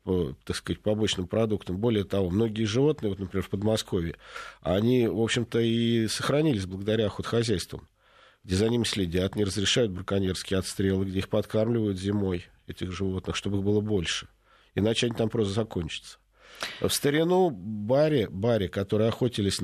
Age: 50-69